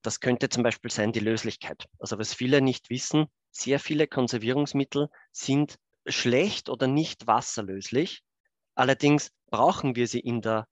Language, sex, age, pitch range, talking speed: English, male, 30-49, 110-130 Hz, 145 wpm